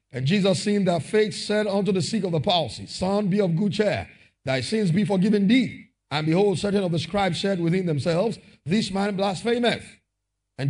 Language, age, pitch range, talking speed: English, 50-69, 170-250 Hz, 195 wpm